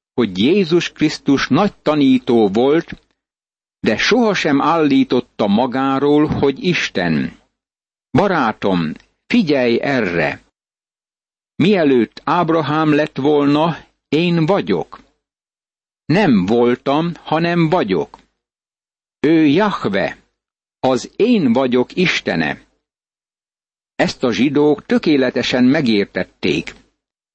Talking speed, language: 80 wpm, Hungarian